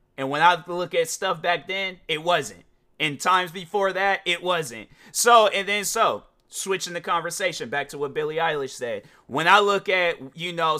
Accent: American